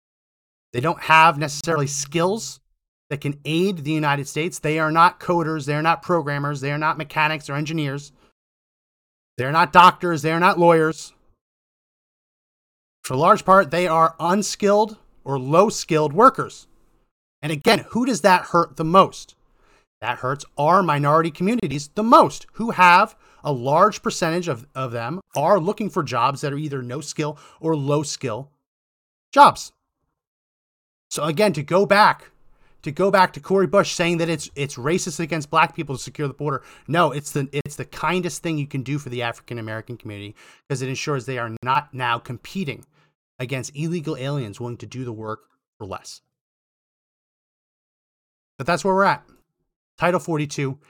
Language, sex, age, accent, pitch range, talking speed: English, male, 30-49, American, 130-170 Hz, 165 wpm